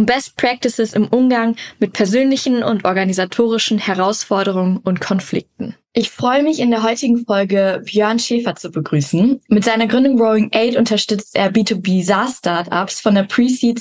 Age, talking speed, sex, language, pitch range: 10-29, 150 wpm, female, German, 195-235 Hz